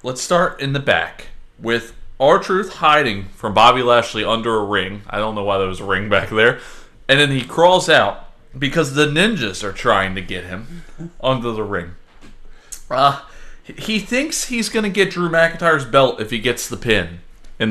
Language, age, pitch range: English, 30-49, 100-170 Hz